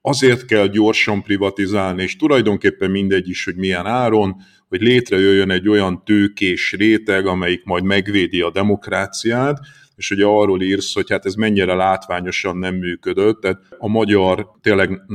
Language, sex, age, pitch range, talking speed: Hungarian, male, 50-69, 95-125 Hz, 145 wpm